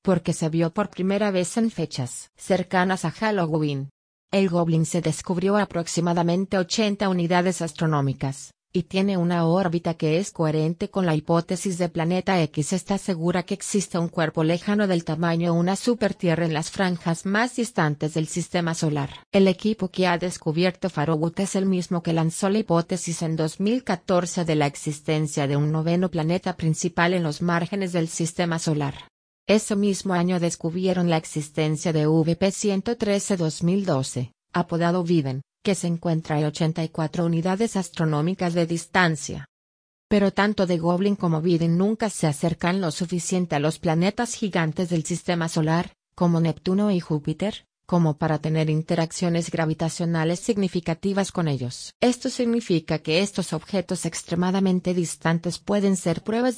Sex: female